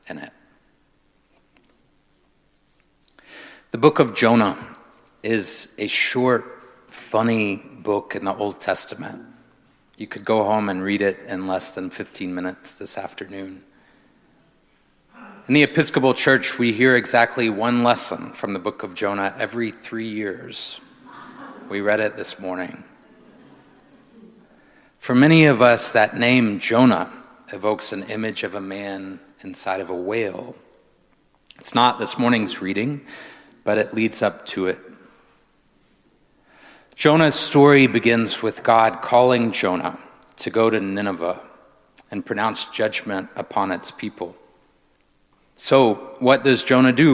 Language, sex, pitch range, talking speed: English, male, 100-125 Hz, 130 wpm